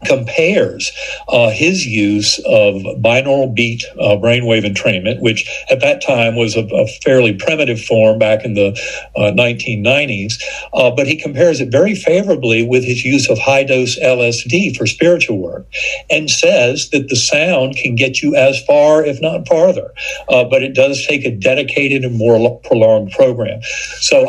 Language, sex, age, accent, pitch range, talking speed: English, male, 60-79, American, 110-145 Hz, 165 wpm